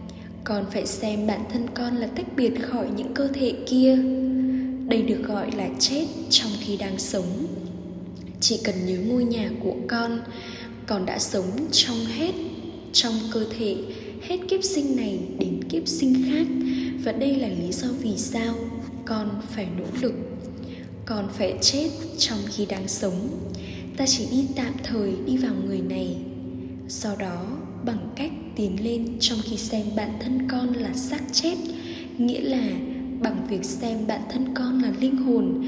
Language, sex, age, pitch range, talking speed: Vietnamese, female, 10-29, 215-260 Hz, 165 wpm